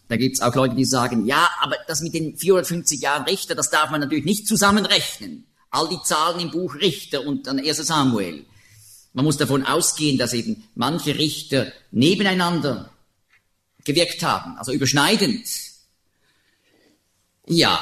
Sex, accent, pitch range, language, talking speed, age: male, German, 125-185 Hz, German, 150 wpm, 50-69